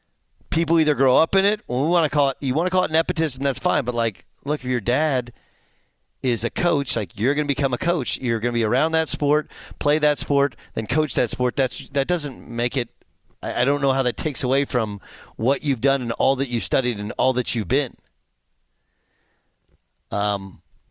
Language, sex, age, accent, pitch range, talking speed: English, male, 40-59, American, 120-155 Hz, 220 wpm